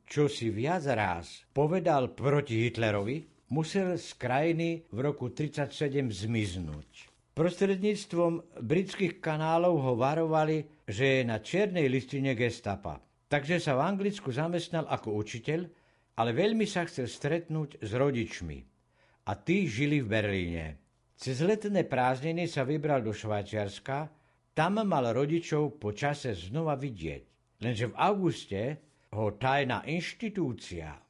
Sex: male